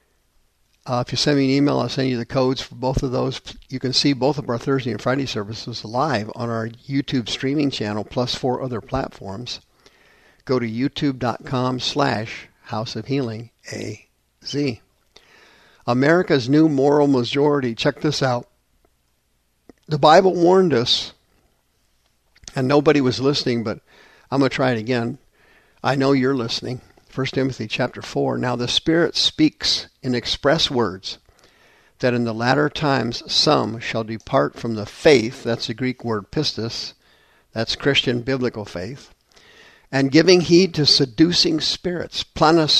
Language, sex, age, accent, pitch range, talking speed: English, male, 50-69, American, 115-145 Hz, 150 wpm